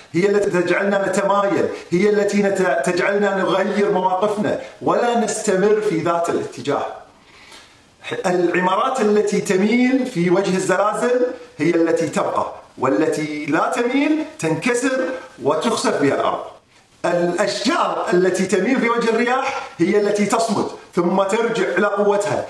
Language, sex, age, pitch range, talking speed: Arabic, male, 40-59, 170-235 Hz, 115 wpm